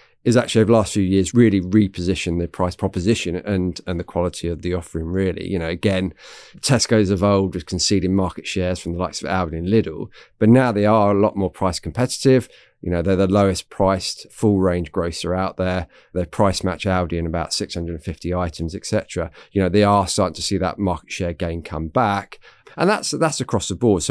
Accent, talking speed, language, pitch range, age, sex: British, 210 wpm, English, 90-105 Hz, 30-49, male